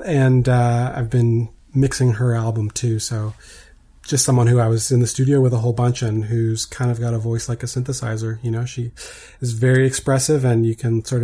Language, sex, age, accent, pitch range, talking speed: English, male, 30-49, American, 115-130 Hz, 220 wpm